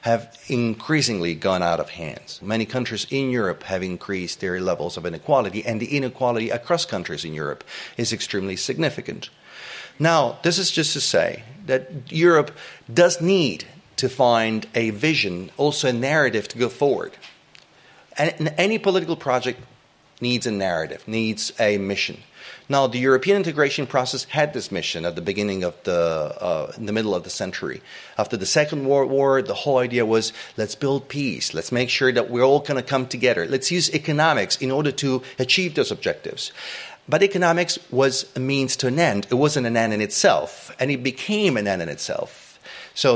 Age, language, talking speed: 30-49, English, 180 wpm